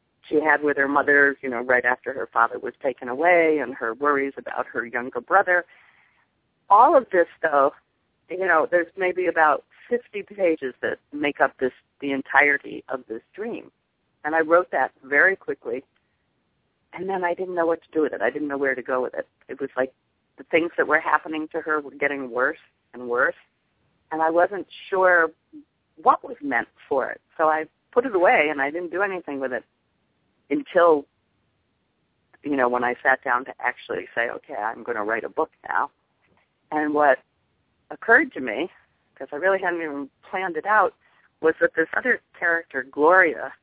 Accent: American